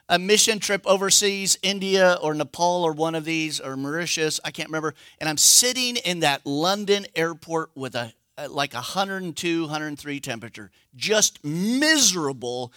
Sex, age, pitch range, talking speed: male, 50-69, 125-185 Hz, 150 wpm